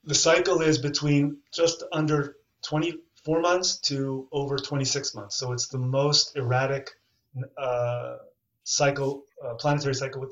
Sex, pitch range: male, 130-155 Hz